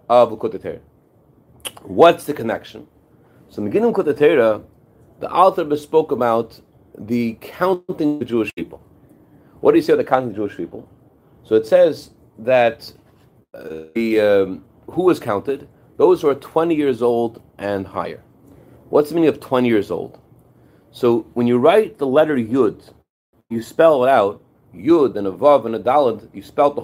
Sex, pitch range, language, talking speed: male, 110-145 Hz, English, 170 wpm